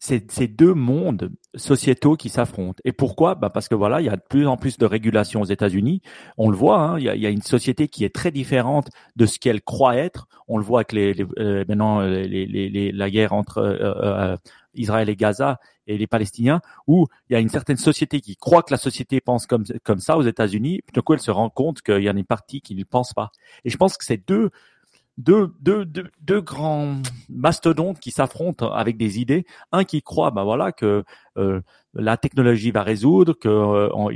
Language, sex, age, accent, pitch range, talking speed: French, male, 40-59, French, 105-140 Hz, 235 wpm